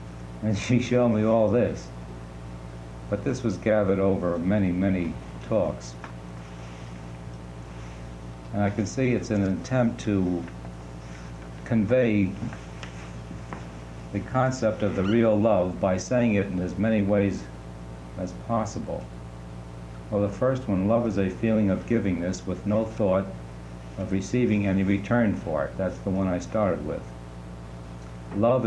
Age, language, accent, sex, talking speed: 60-79, English, American, male, 135 wpm